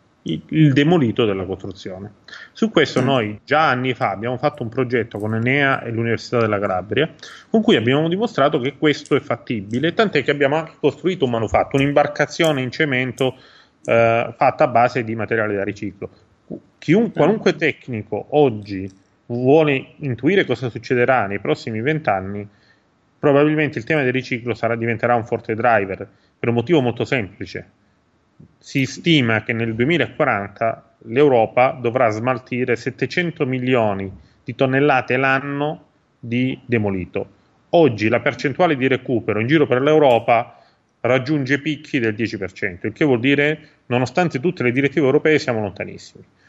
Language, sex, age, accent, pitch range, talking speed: Italian, male, 30-49, native, 115-145 Hz, 140 wpm